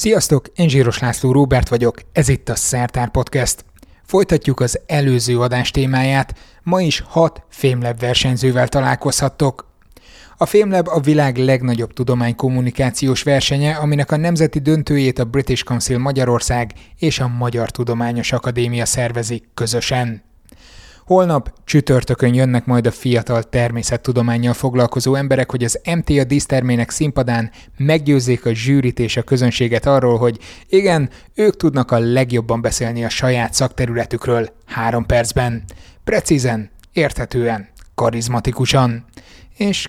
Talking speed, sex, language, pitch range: 120 wpm, male, Hungarian, 120-140 Hz